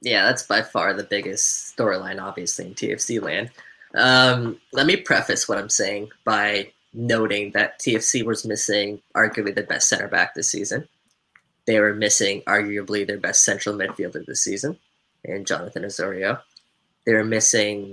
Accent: American